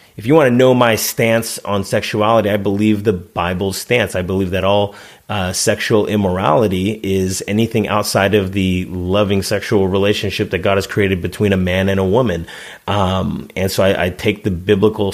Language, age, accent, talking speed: English, 30-49, American, 185 wpm